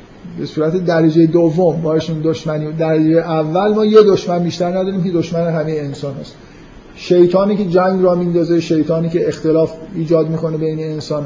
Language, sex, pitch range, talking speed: Persian, male, 160-185 Hz, 160 wpm